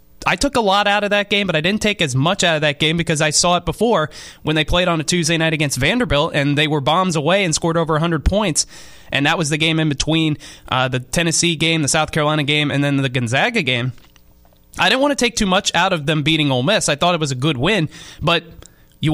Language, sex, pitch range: English, male, 140-170 Hz